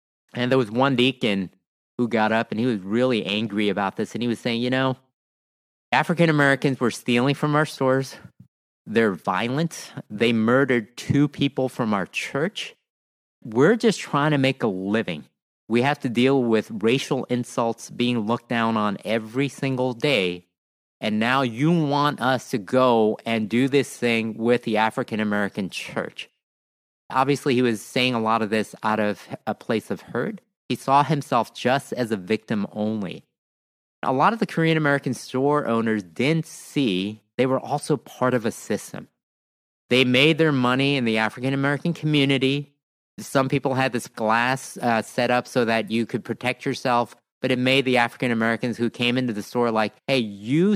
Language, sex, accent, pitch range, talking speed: English, male, American, 110-135 Hz, 175 wpm